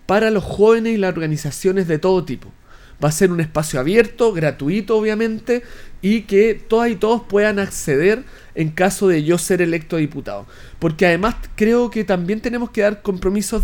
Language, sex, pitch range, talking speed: Spanish, male, 170-220 Hz, 175 wpm